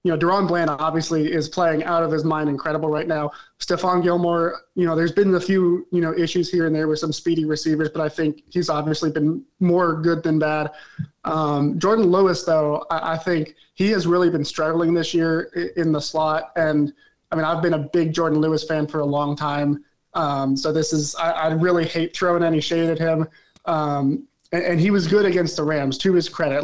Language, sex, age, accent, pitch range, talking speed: English, male, 20-39, American, 155-170 Hz, 220 wpm